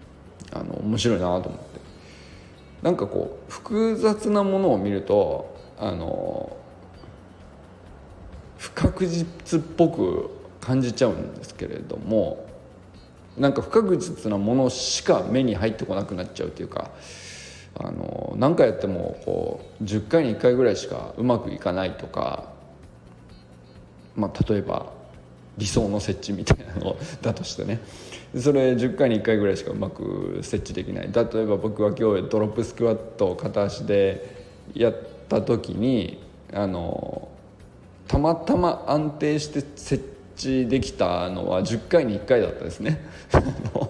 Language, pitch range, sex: Japanese, 90-130 Hz, male